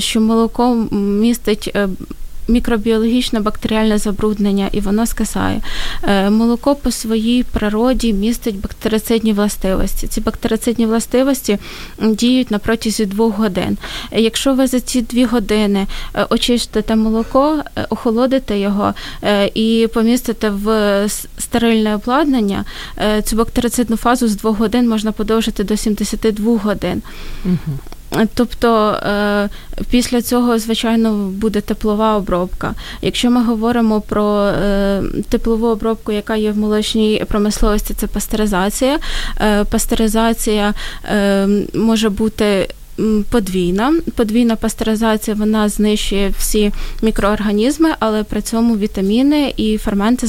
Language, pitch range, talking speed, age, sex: Ukrainian, 210-230 Hz, 100 wpm, 20-39, female